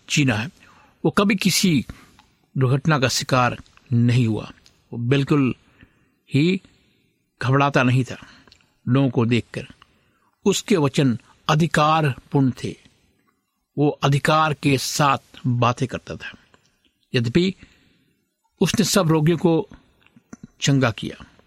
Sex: male